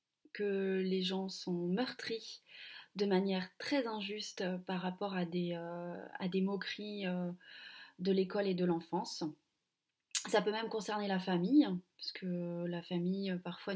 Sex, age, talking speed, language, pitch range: female, 30-49, 150 wpm, French, 185-235 Hz